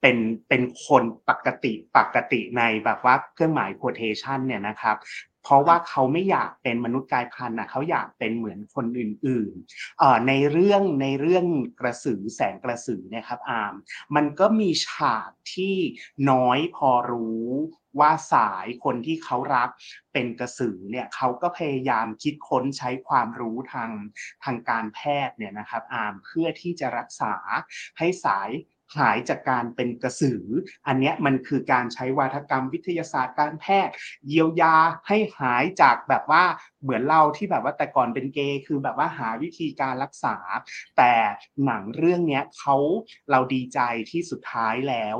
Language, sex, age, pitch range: Thai, male, 30-49, 120-160 Hz